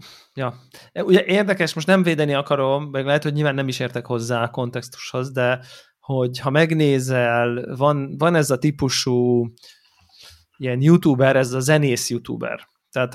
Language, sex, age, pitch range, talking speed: Hungarian, male, 20-39, 125-150 Hz, 150 wpm